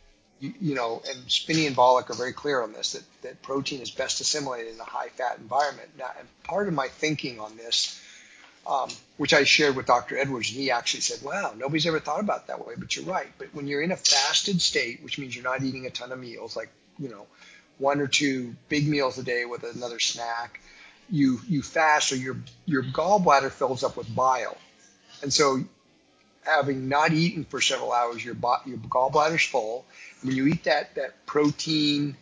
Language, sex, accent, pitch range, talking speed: English, male, American, 125-150 Hz, 205 wpm